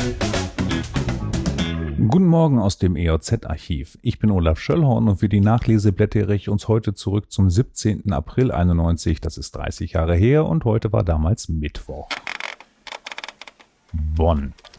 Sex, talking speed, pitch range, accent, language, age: male, 135 wpm, 90-125 Hz, German, German, 40-59